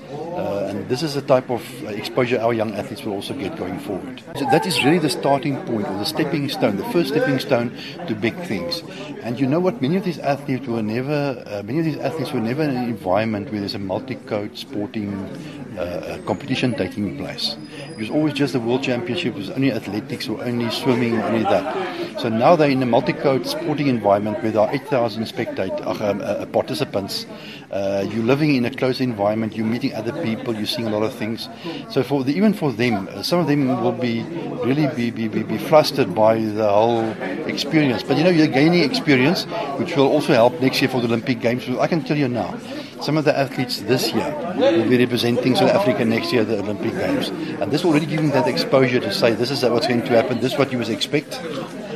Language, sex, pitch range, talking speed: English, male, 110-140 Hz, 225 wpm